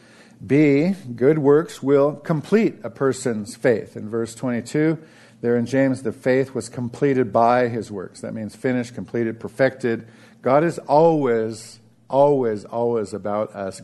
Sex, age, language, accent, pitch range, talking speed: male, 50-69, English, American, 115-155 Hz, 145 wpm